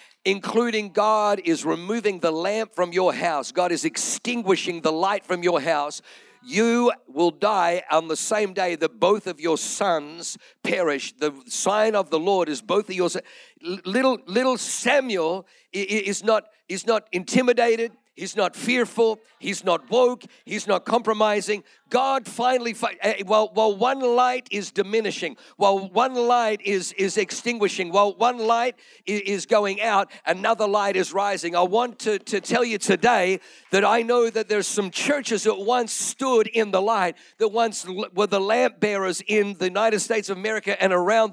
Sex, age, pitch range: male, 50-69, 195-235 Hz